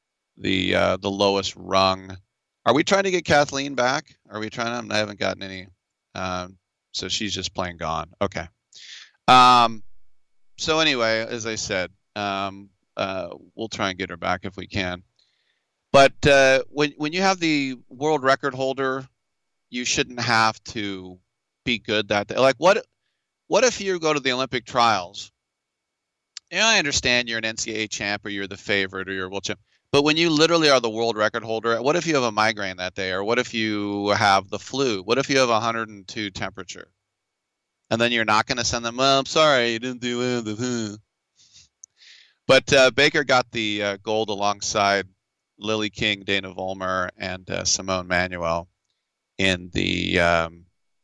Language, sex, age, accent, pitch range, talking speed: English, male, 40-59, American, 95-125 Hz, 185 wpm